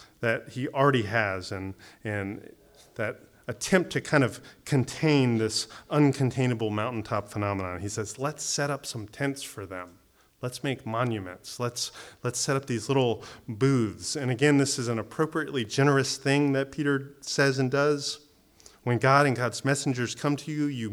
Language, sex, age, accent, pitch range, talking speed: English, male, 30-49, American, 115-140 Hz, 165 wpm